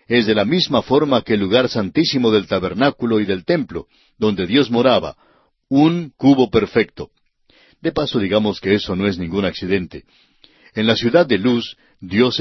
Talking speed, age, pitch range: 170 wpm, 60-79, 110-150 Hz